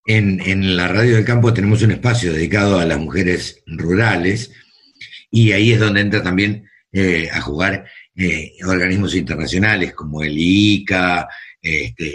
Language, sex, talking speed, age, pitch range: Spanish, male, 155 wpm, 50-69, 90-115 Hz